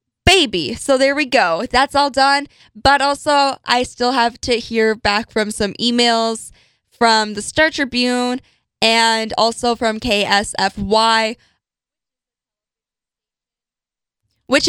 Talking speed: 115 wpm